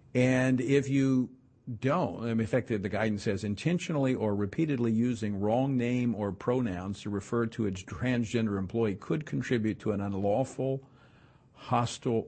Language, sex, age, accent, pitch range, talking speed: English, male, 50-69, American, 100-130 Hz, 140 wpm